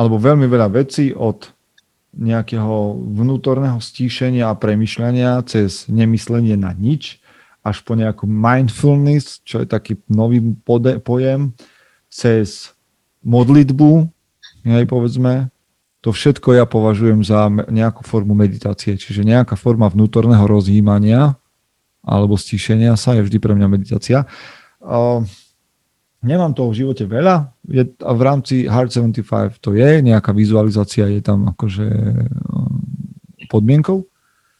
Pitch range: 105-130 Hz